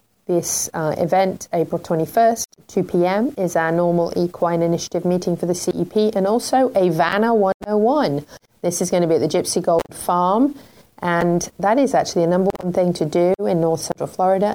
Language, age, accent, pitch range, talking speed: English, 30-49, British, 165-195 Hz, 185 wpm